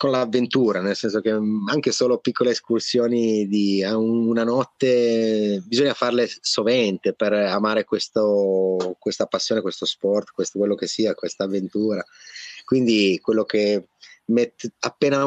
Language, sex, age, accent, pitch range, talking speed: Italian, male, 30-49, native, 105-120 Hz, 130 wpm